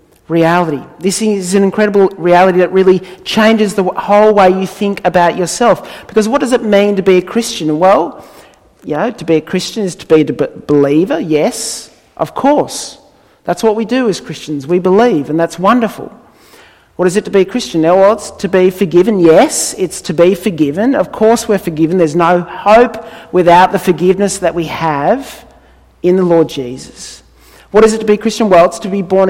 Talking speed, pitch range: 200 wpm, 165-205 Hz